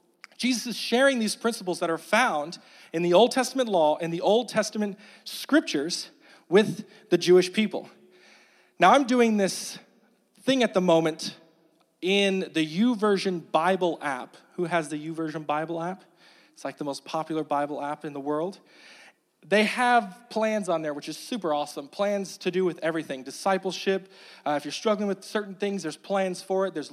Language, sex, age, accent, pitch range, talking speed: English, male, 40-59, American, 165-215 Hz, 175 wpm